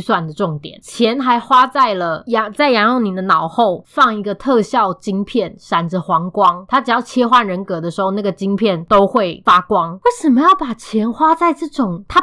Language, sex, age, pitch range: Chinese, female, 20-39, 200-280 Hz